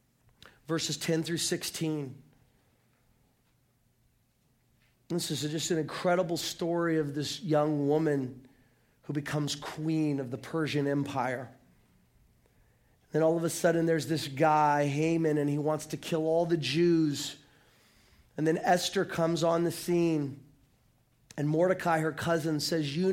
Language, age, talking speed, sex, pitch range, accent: English, 40-59, 130 wpm, male, 150-180 Hz, American